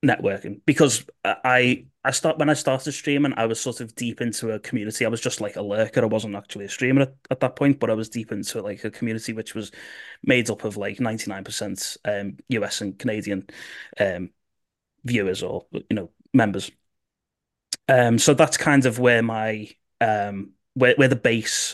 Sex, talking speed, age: male, 195 wpm, 20-39